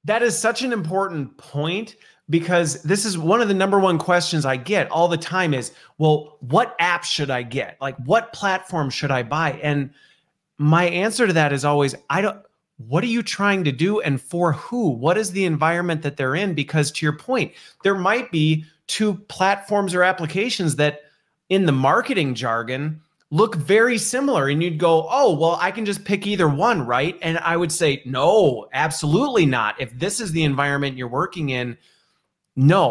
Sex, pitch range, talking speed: male, 140-185 Hz, 190 wpm